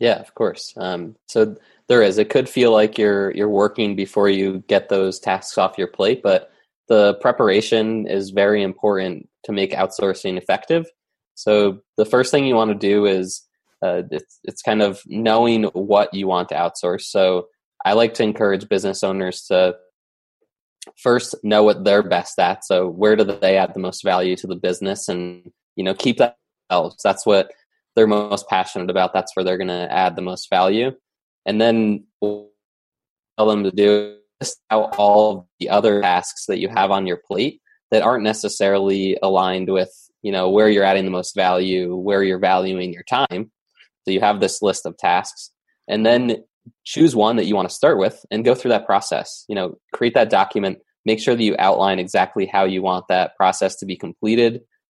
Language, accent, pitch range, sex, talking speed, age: English, American, 95-105 Hz, male, 195 wpm, 20-39